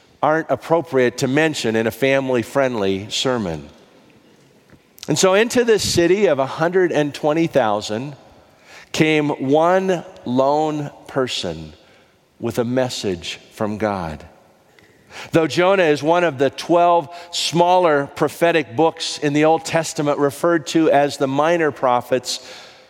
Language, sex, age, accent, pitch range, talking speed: English, male, 50-69, American, 130-170 Hz, 115 wpm